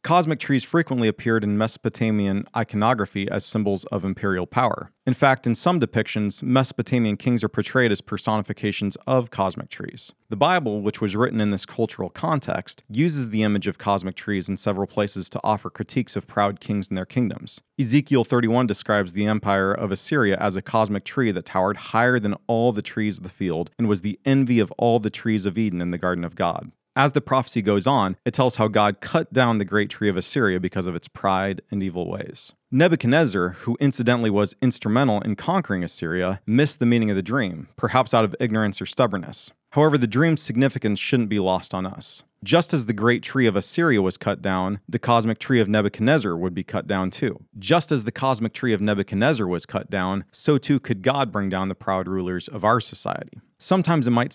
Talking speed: 205 wpm